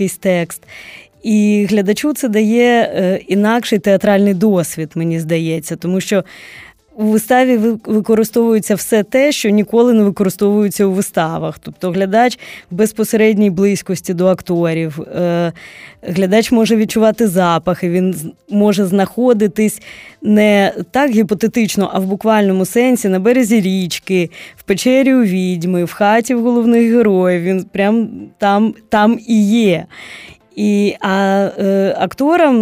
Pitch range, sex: 185-220 Hz, female